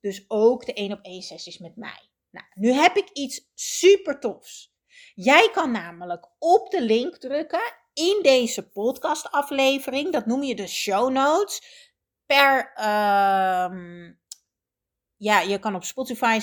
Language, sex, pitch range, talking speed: Dutch, female, 205-295 Hz, 145 wpm